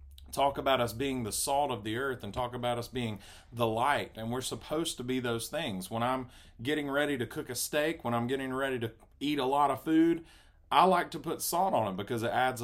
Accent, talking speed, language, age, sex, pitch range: American, 240 wpm, English, 40-59, male, 115-145 Hz